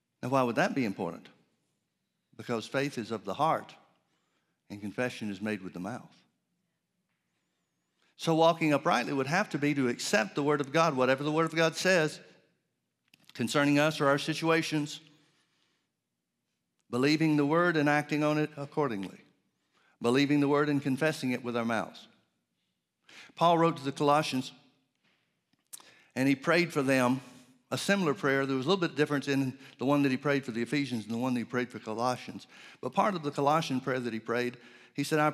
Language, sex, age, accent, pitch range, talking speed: English, male, 60-79, American, 120-155 Hz, 185 wpm